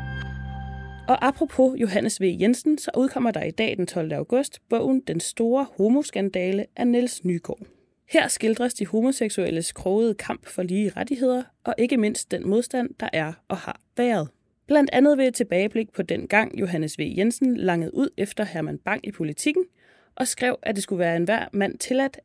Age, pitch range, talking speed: 20-39, 180-250 Hz, 180 wpm